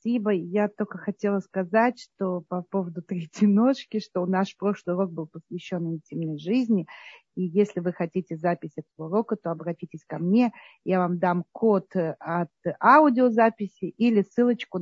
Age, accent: 40-59, native